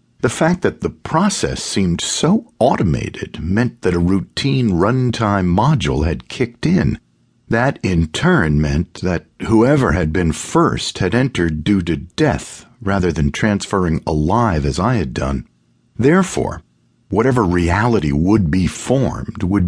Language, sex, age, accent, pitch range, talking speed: English, male, 50-69, American, 85-120 Hz, 140 wpm